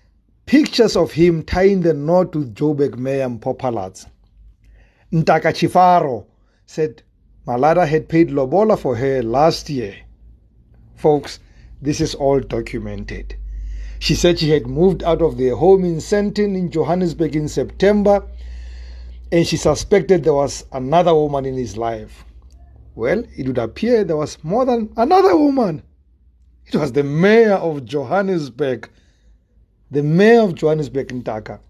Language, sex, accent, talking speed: English, male, South African, 140 wpm